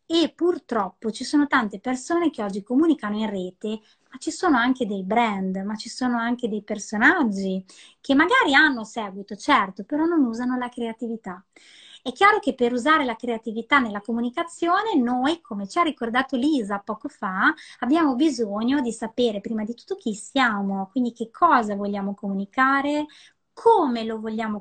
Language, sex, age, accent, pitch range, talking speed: Italian, female, 20-39, native, 210-275 Hz, 165 wpm